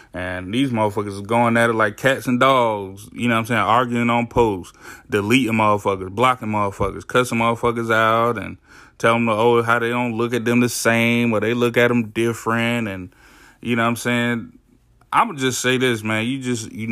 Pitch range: 110-125 Hz